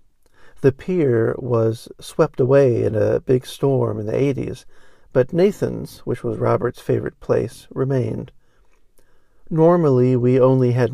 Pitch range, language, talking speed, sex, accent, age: 120-145 Hz, English, 130 wpm, male, American, 50-69